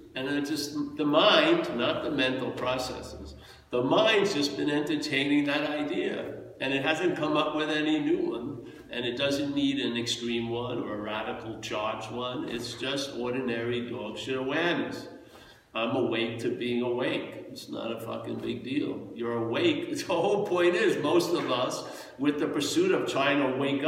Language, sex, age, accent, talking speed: English, male, 60-79, American, 175 wpm